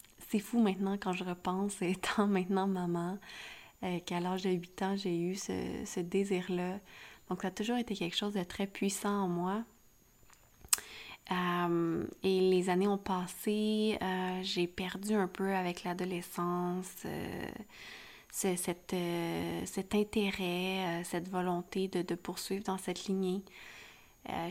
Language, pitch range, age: French, 180-205 Hz, 20-39